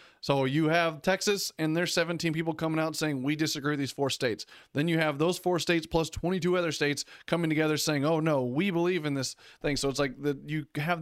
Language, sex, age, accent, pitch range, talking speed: English, male, 30-49, American, 140-170 Hz, 235 wpm